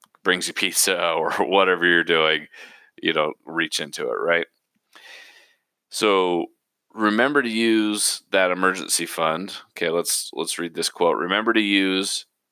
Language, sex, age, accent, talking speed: English, male, 30-49, American, 140 wpm